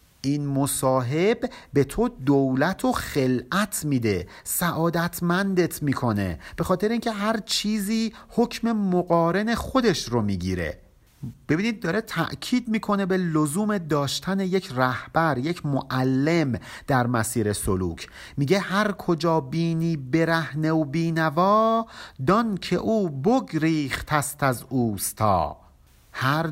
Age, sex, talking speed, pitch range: 50-69, male, 110 wpm, 130-190 Hz